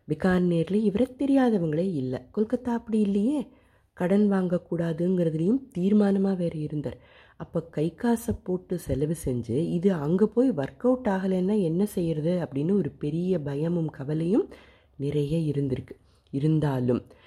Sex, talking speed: female, 115 wpm